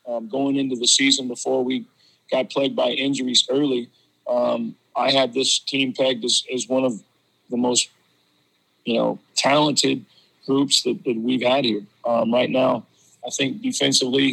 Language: English